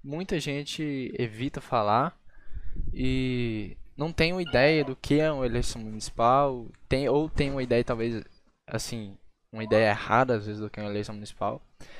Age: 10-29